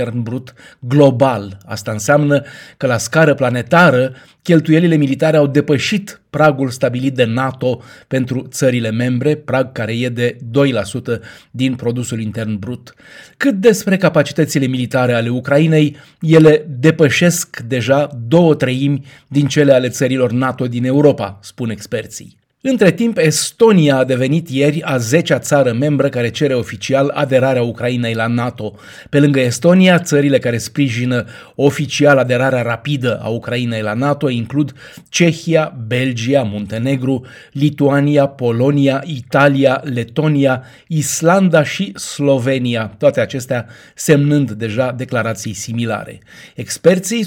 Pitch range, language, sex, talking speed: 125-150 Hz, Romanian, male, 120 wpm